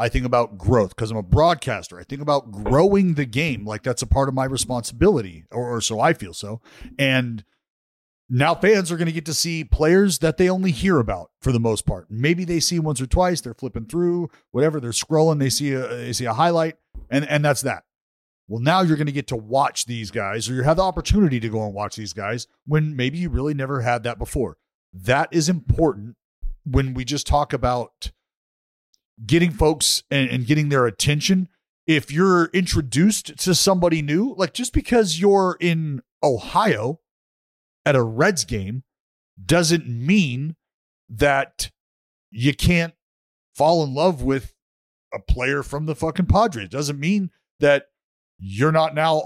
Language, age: English, 40-59